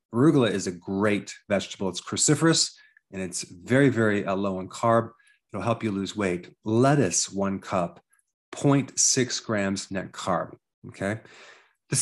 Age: 30-49